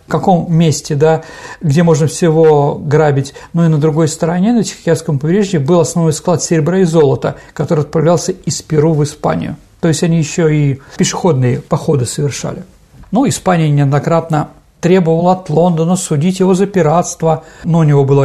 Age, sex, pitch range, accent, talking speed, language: 50-69, male, 140-175 Hz, native, 165 wpm, Russian